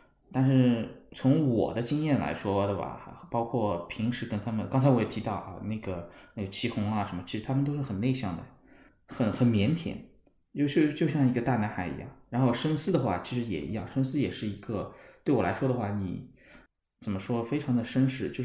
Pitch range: 100-125 Hz